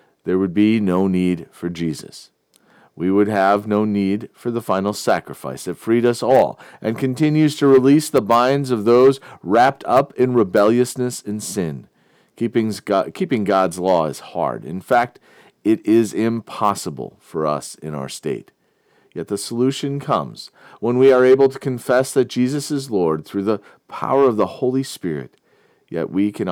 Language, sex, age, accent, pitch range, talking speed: English, male, 40-59, American, 100-130 Hz, 165 wpm